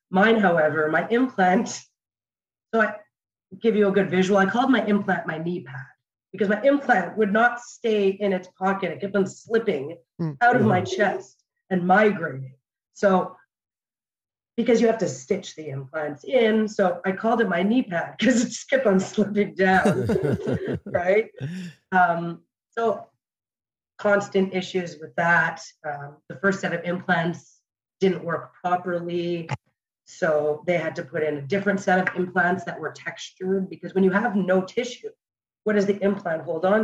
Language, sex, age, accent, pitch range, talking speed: English, female, 30-49, American, 155-200 Hz, 165 wpm